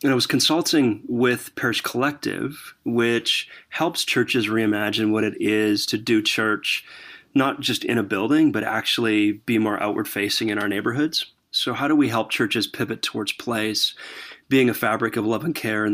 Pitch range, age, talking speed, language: 110-130 Hz, 30-49, 180 wpm, English